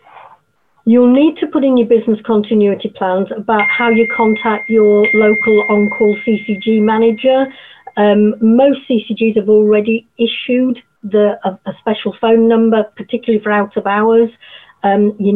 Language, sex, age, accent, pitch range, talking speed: English, female, 50-69, British, 195-230 Hz, 140 wpm